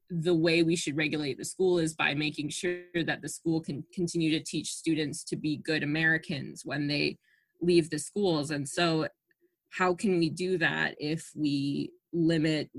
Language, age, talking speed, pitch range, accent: English, 20-39, 180 wpm, 150-175 Hz, American